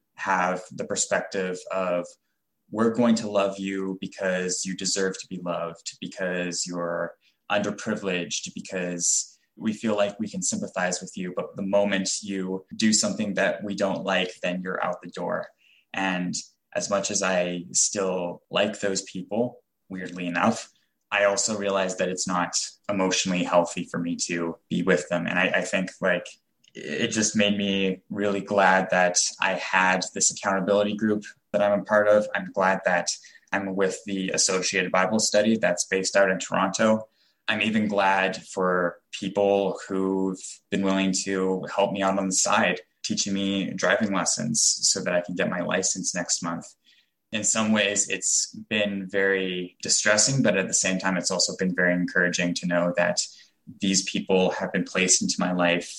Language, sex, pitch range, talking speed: English, male, 90-100 Hz, 170 wpm